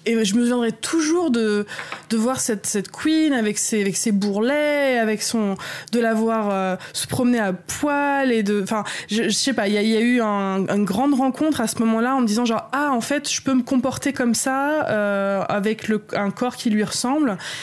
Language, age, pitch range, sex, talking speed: French, 20-39, 185-235 Hz, female, 230 wpm